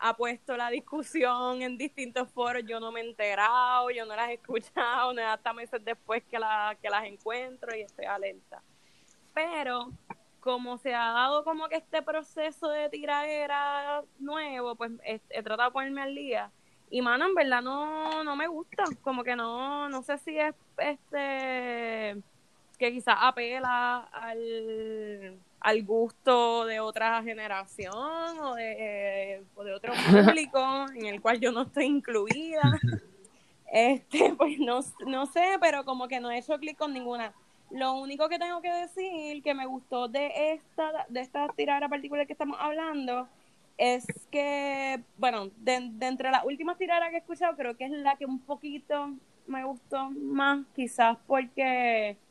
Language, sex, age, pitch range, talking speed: Spanish, female, 10-29, 230-290 Hz, 165 wpm